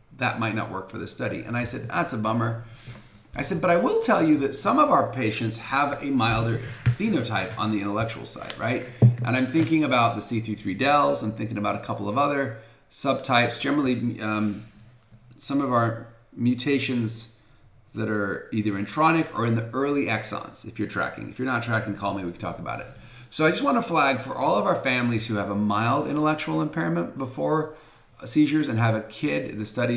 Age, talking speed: 40-59, 205 wpm